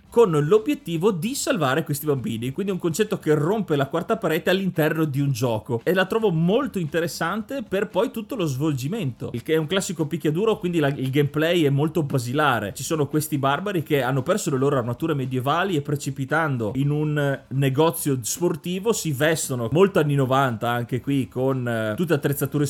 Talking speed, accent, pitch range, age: 180 wpm, native, 135-185 Hz, 30-49